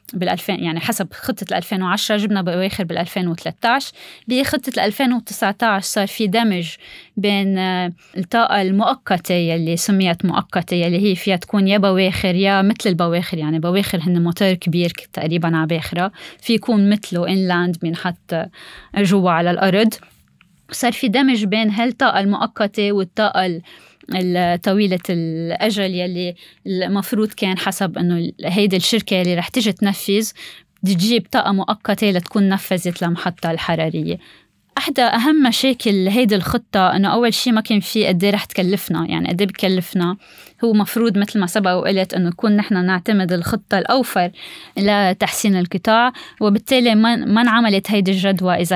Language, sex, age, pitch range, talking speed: Arabic, female, 20-39, 180-215 Hz, 140 wpm